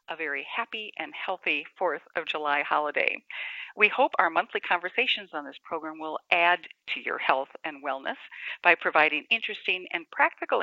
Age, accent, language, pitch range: 50-69, American, English, 165-250 Hz